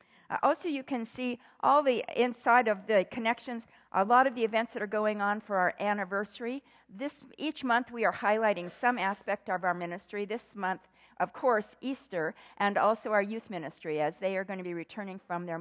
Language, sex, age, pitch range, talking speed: English, female, 50-69, 180-230 Hz, 200 wpm